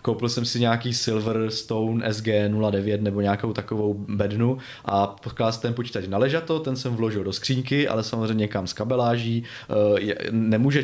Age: 20-39